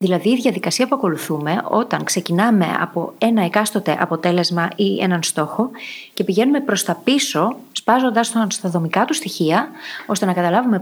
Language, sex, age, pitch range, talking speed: Greek, female, 30-49, 175-225 Hz, 150 wpm